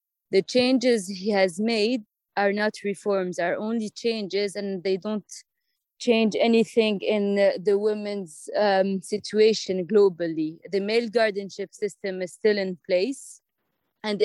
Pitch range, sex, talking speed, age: 195-230 Hz, female, 135 wpm, 20-39